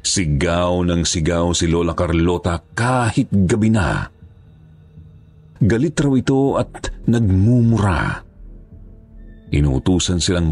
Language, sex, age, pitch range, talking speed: Filipino, male, 40-59, 80-105 Hz, 90 wpm